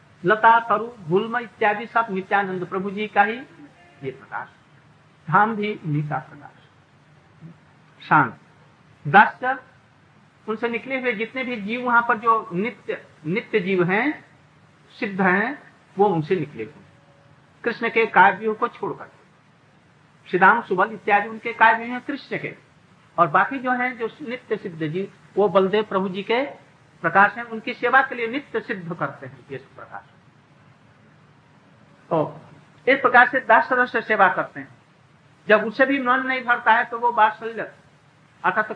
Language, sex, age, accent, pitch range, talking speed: Hindi, male, 50-69, native, 155-225 Hz, 145 wpm